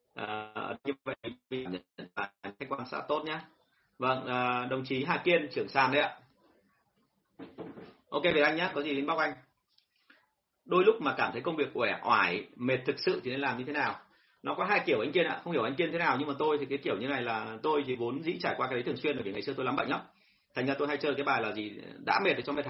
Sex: male